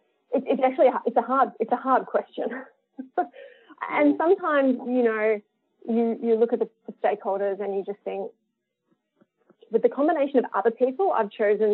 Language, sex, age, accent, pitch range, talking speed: English, female, 20-39, Australian, 205-285 Hz, 170 wpm